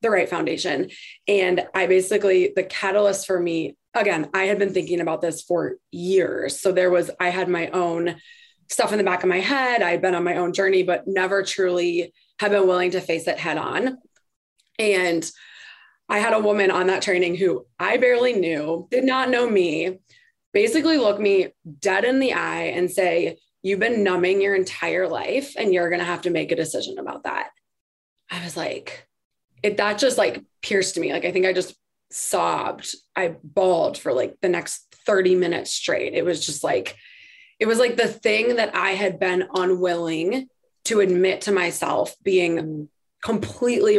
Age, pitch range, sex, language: 20-39, 180-225 Hz, female, English